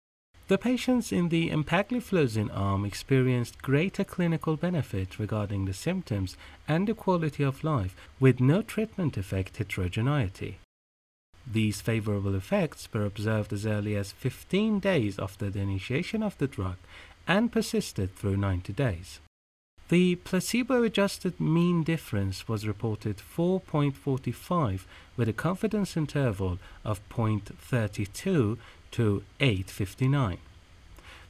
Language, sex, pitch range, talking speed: Persian, male, 100-155 Hz, 115 wpm